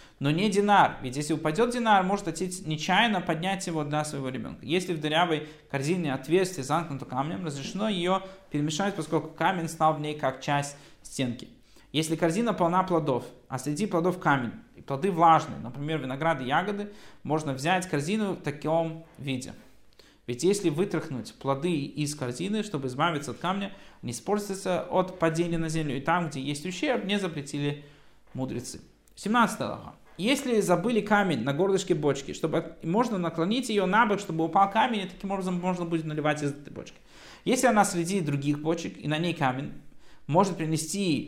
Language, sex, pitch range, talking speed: Russian, male, 145-190 Hz, 165 wpm